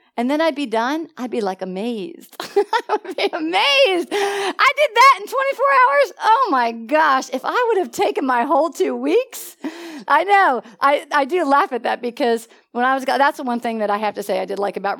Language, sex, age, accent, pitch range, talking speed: English, female, 40-59, American, 225-310 Hz, 225 wpm